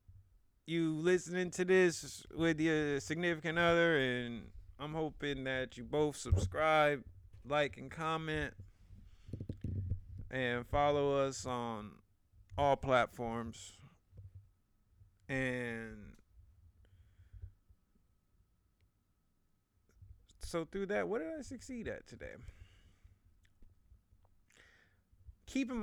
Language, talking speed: English, 80 wpm